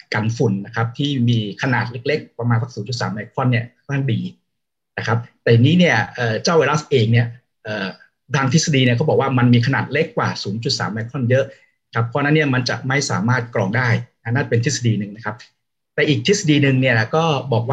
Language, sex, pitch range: Thai, male, 115-140 Hz